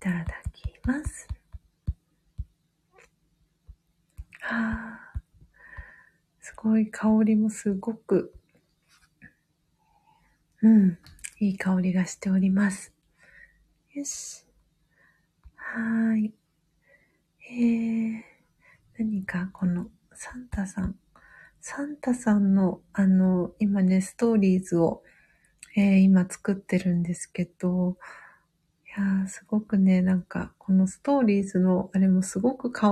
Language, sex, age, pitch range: Japanese, female, 40-59, 185-220 Hz